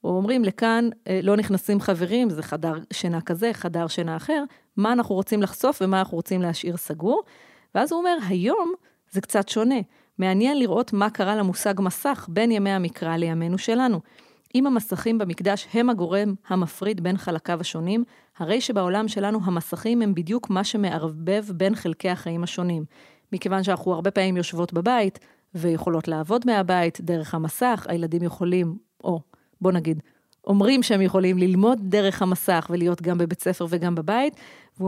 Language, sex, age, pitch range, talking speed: Hebrew, female, 30-49, 175-225 Hz, 155 wpm